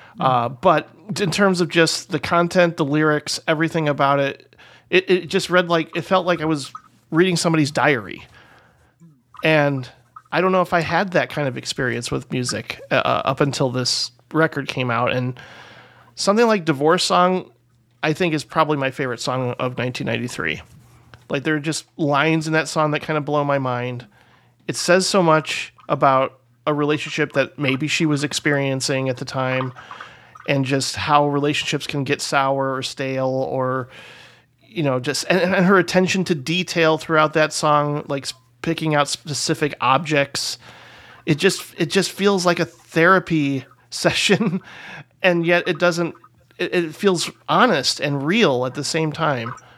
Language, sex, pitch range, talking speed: English, male, 135-170 Hz, 170 wpm